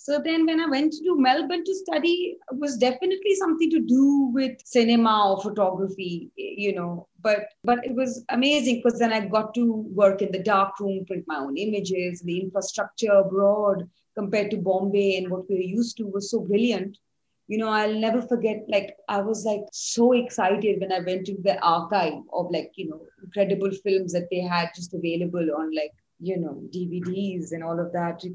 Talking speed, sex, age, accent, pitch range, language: 195 wpm, female, 30-49, Indian, 180-235 Hz, English